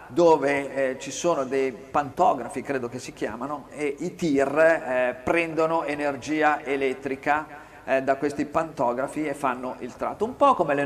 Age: 50-69